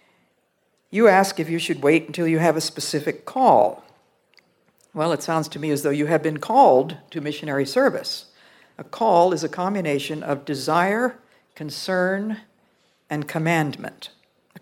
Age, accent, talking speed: 60-79, American, 150 wpm